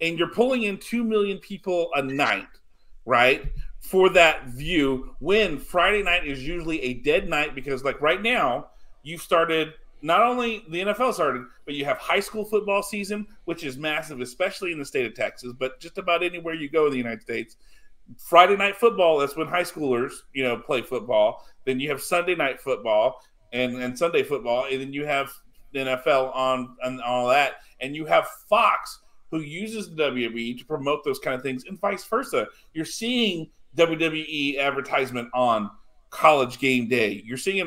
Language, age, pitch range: English, 40-59, 135-190 Hz